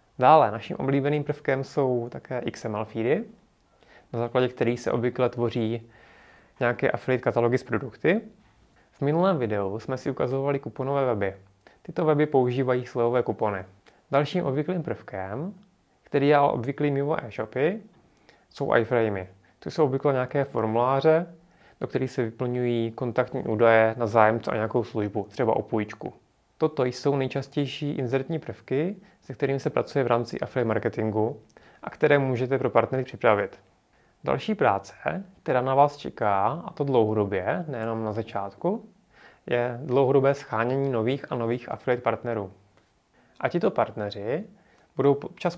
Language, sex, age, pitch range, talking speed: Czech, male, 30-49, 115-140 Hz, 140 wpm